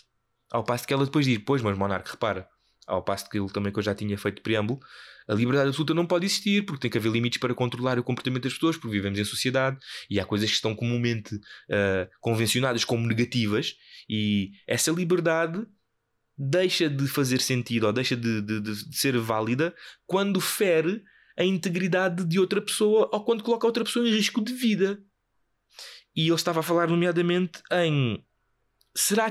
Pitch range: 110-165 Hz